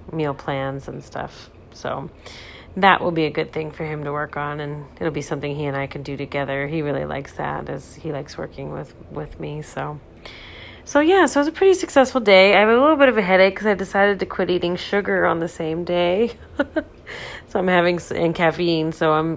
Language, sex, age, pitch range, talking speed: English, female, 30-49, 150-195 Hz, 225 wpm